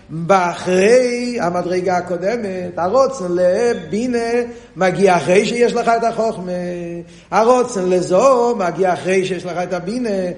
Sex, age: male, 50-69